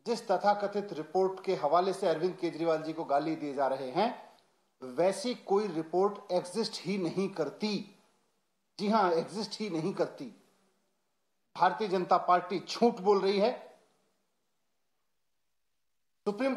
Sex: male